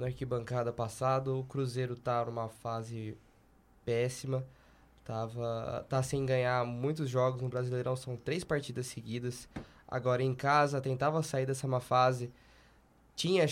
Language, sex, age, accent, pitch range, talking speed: Portuguese, male, 20-39, Brazilian, 130-150 Hz, 135 wpm